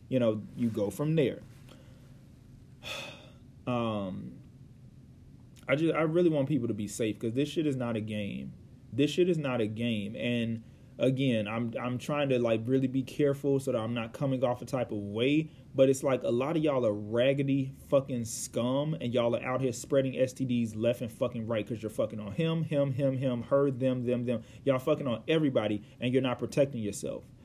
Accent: American